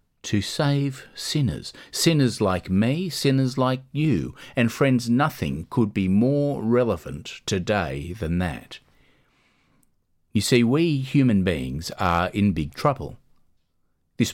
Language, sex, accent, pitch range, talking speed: English, male, Australian, 90-135 Hz, 120 wpm